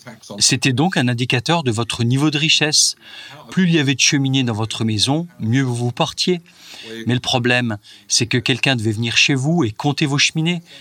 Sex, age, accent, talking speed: male, 40-59, French, 195 wpm